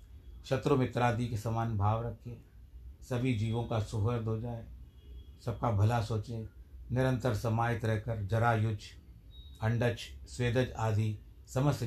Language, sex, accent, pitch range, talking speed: Hindi, male, native, 80-120 Hz, 120 wpm